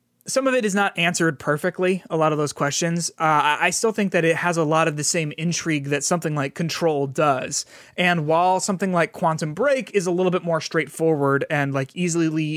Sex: male